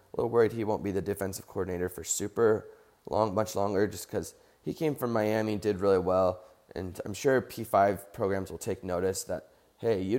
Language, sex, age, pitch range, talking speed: English, male, 20-39, 95-115 Hz, 200 wpm